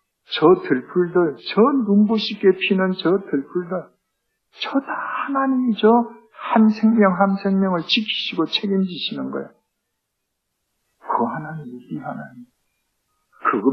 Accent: Korean